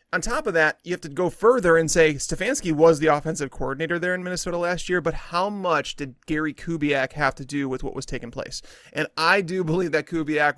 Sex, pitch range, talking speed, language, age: male, 140-170 Hz, 235 wpm, English, 30-49